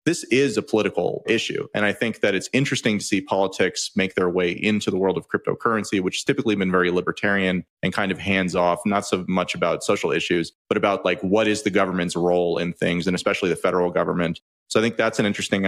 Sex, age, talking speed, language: male, 30-49, 225 wpm, English